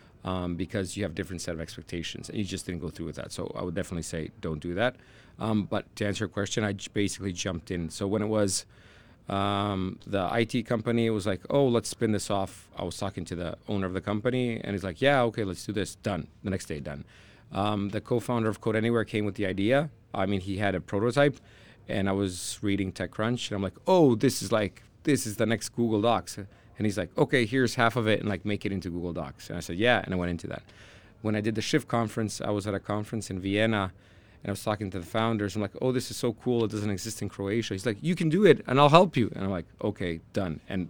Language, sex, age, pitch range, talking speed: Croatian, male, 30-49, 95-115 Hz, 260 wpm